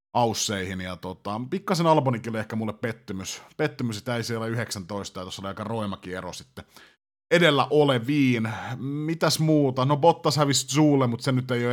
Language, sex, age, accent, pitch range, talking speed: Finnish, male, 30-49, native, 110-140 Hz, 160 wpm